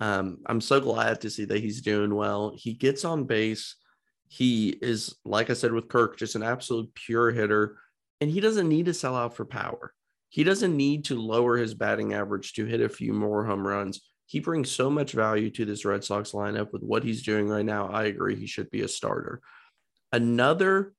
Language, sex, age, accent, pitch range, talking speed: English, male, 30-49, American, 105-135 Hz, 210 wpm